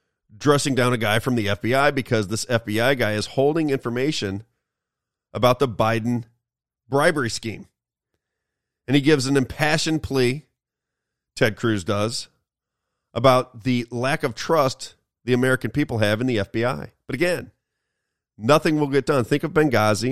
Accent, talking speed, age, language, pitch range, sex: American, 145 wpm, 40-59, English, 110-135 Hz, male